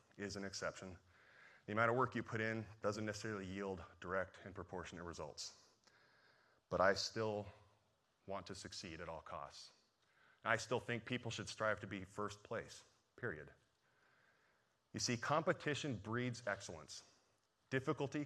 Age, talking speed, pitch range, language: 30-49, 140 wpm, 95-115 Hz, English